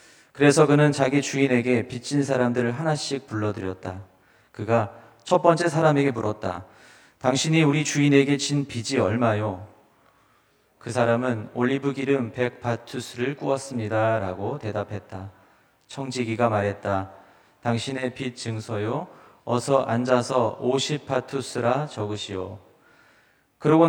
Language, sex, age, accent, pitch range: Korean, male, 40-59, native, 110-140 Hz